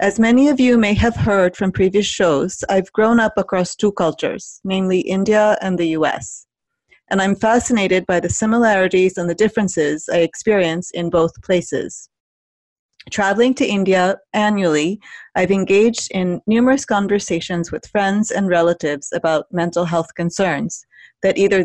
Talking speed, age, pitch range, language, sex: 150 wpm, 30-49, 175-210 Hz, English, female